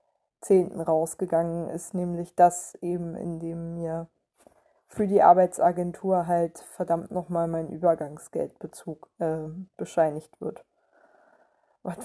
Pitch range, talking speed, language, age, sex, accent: 170-210 Hz, 105 wpm, German, 20-39, female, German